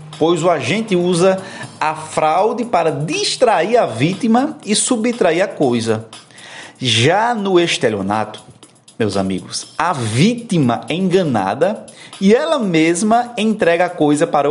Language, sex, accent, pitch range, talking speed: Portuguese, male, Brazilian, 150-200 Hz, 125 wpm